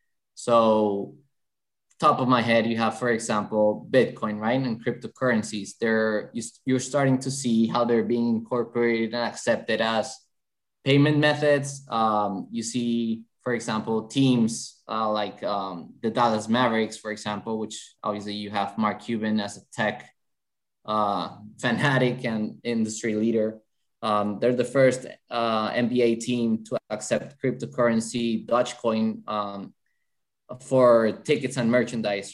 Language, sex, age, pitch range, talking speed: English, male, 20-39, 110-125 Hz, 130 wpm